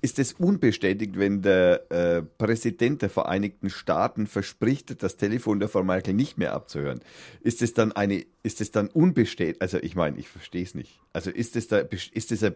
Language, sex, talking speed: German, male, 195 wpm